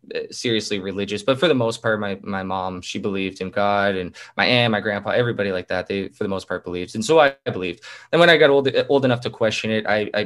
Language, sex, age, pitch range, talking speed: English, male, 20-39, 100-115 Hz, 255 wpm